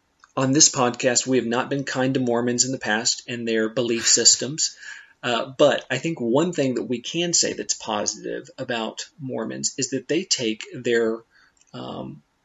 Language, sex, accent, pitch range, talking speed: English, male, American, 115-135 Hz, 180 wpm